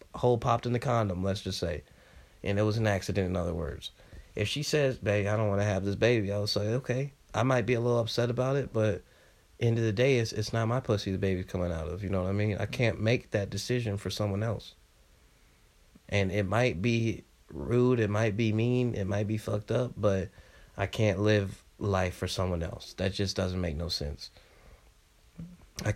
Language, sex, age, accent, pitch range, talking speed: English, male, 30-49, American, 90-110 Hz, 220 wpm